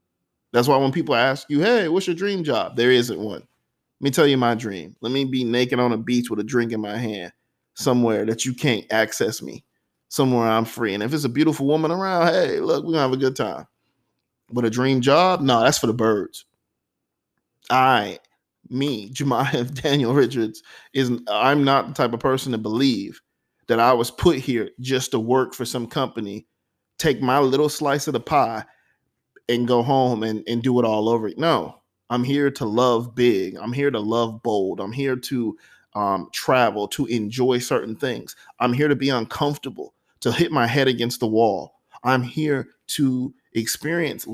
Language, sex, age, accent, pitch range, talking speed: English, male, 20-39, American, 115-140 Hz, 195 wpm